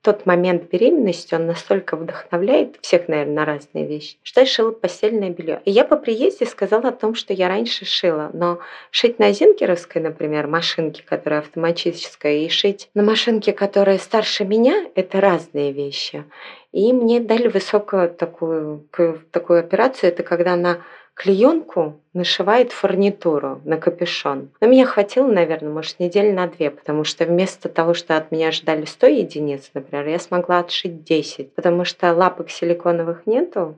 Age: 20-39